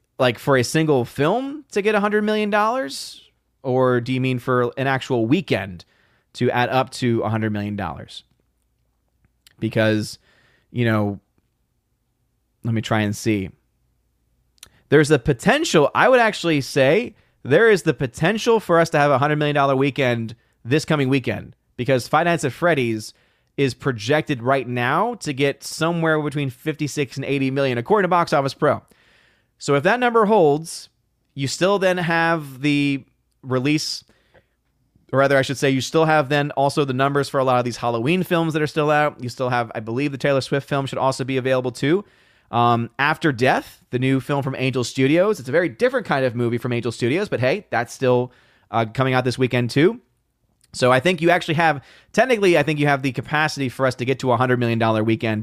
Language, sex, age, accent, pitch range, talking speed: English, male, 30-49, American, 120-150 Hz, 195 wpm